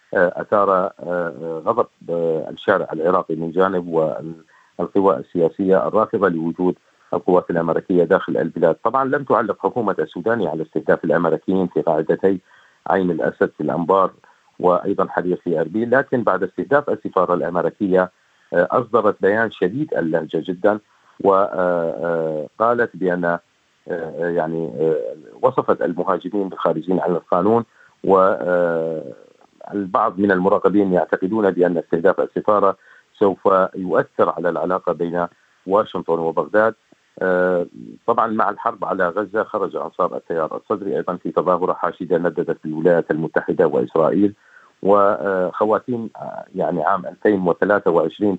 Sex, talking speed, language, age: male, 105 wpm, Arabic, 40-59